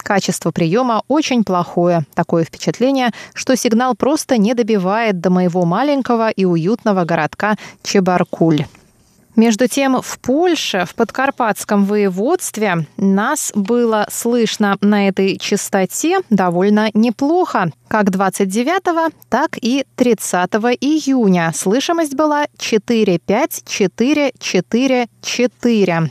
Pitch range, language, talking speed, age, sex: 180-245 Hz, Russian, 100 wpm, 20-39, female